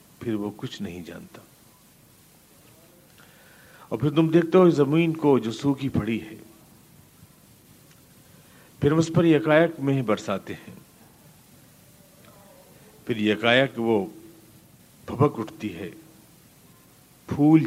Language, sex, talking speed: Urdu, male, 100 wpm